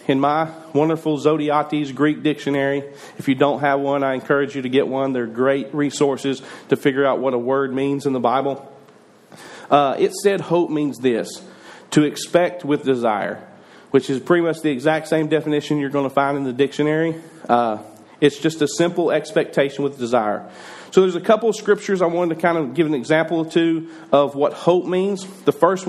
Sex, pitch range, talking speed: male, 135-165 Hz, 195 wpm